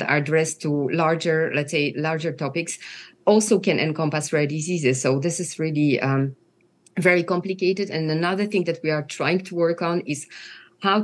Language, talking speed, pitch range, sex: English, 175 wpm, 150-185 Hz, female